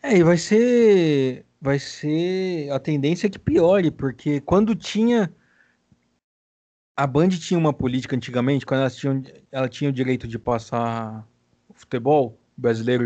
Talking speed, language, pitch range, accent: 140 wpm, Portuguese, 135-175 Hz, Brazilian